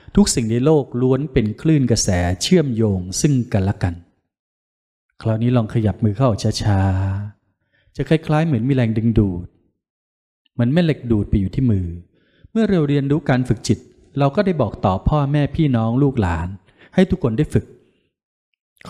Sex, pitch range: male, 105-145 Hz